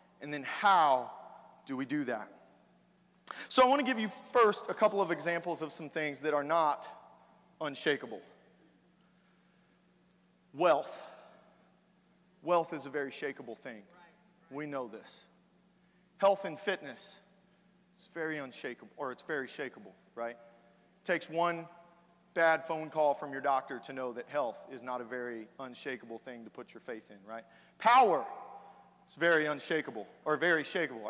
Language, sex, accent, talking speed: English, male, American, 150 wpm